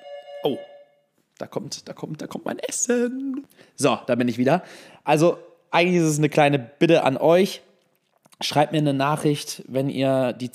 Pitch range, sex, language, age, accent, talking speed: 130-155 Hz, male, German, 20-39, German, 175 wpm